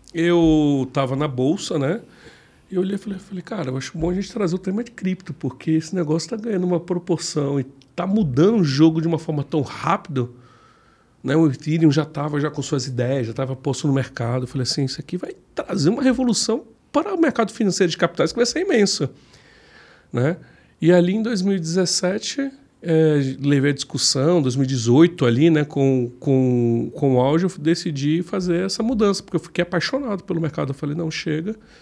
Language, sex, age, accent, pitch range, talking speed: Portuguese, male, 40-59, Brazilian, 140-195 Hz, 195 wpm